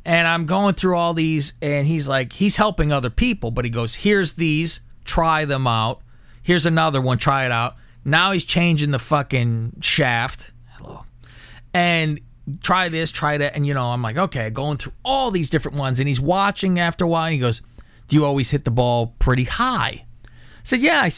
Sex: male